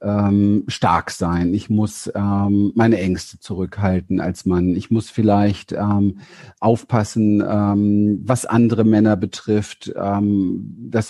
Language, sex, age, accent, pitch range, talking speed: German, male, 40-59, German, 100-115 Hz, 120 wpm